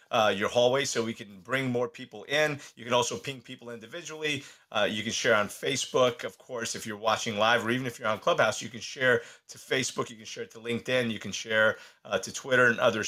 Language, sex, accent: English, male, American